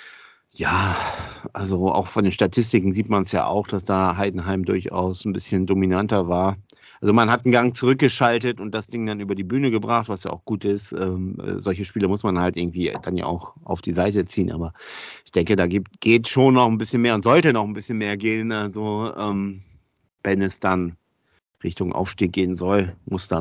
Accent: German